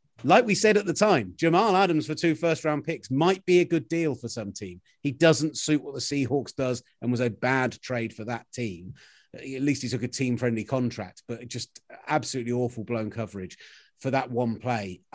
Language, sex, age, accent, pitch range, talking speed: English, male, 30-49, British, 115-135 Hz, 215 wpm